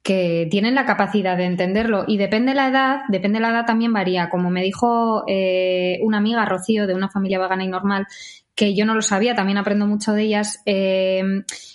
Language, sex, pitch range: Spanish, female, 190-240 Hz